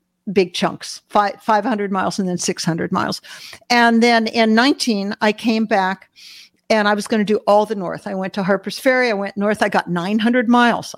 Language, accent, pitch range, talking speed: English, American, 205-250 Hz, 200 wpm